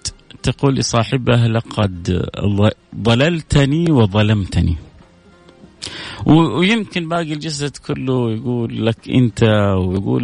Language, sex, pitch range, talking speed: Arabic, male, 105-140 Hz, 75 wpm